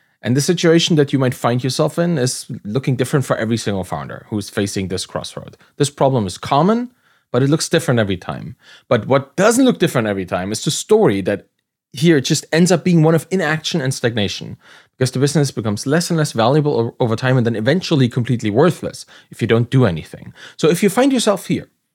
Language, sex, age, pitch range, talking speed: English, male, 30-49, 120-170 Hz, 210 wpm